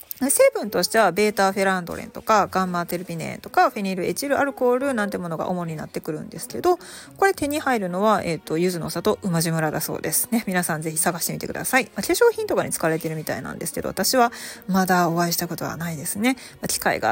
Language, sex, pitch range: Japanese, female, 175-260 Hz